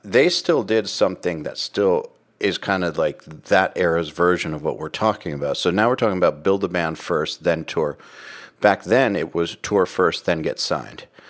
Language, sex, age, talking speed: English, male, 50-69, 200 wpm